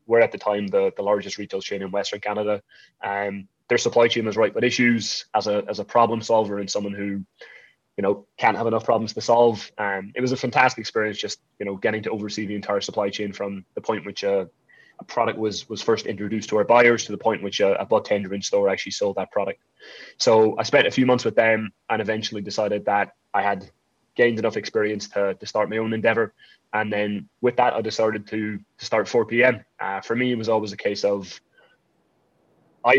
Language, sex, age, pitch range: English, male, 20-39, 100-115 Hz